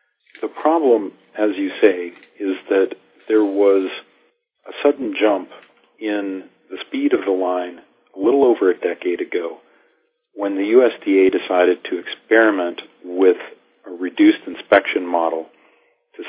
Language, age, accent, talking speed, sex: English, 50-69, American, 135 wpm, male